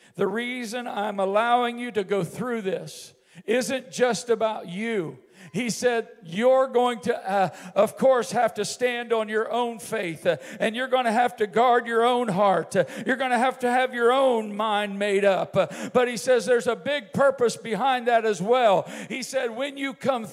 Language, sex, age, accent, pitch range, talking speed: Italian, male, 50-69, American, 230-285 Hz, 190 wpm